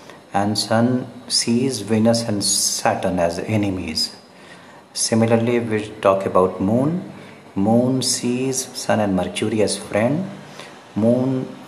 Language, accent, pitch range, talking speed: English, Indian, 100-120 Hz, 110 wpm